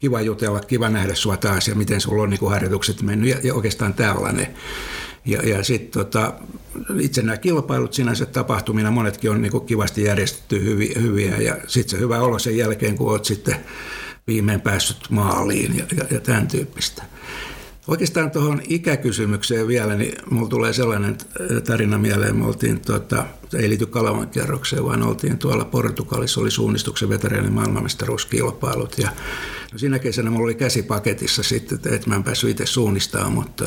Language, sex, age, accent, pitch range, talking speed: Finnish, male, 60-79, native, 105-125 Hz, 160 wpm